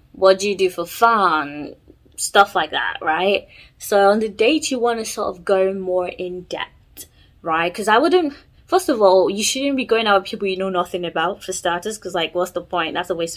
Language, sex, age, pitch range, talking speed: English, female, 20-39, 175-225 Hz, 225 wpm